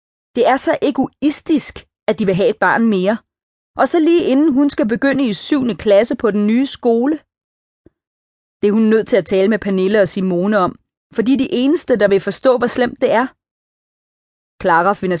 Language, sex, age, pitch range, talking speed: Danish, female, 30-49, 185-230 Hz, 200 wpm